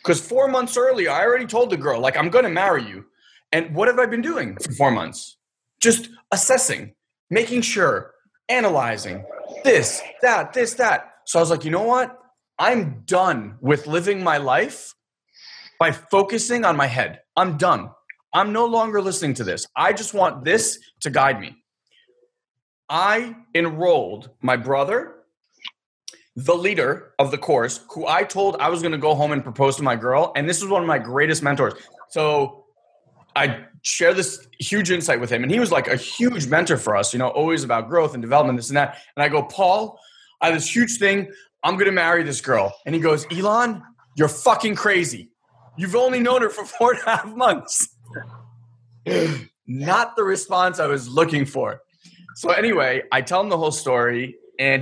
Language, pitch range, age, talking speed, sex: English, 140-220 Hz, 20-39, 185 wpm, male